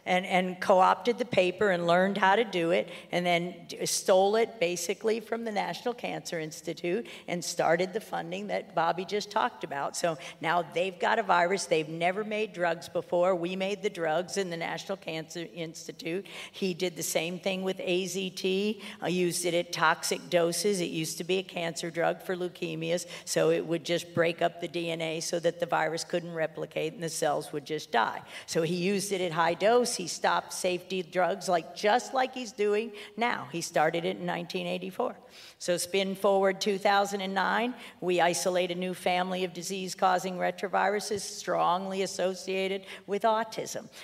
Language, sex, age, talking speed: English, female, 50-69, 175 wpm